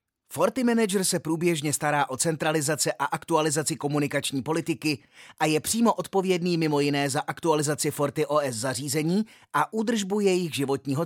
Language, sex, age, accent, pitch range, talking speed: Czech, male, 30-49, native, 145-190 Hz, 135 wpm